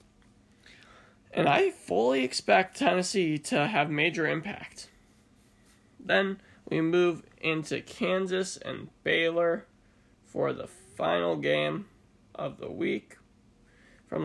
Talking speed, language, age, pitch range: 100 wpm, English, 20-39, 100-165 Hz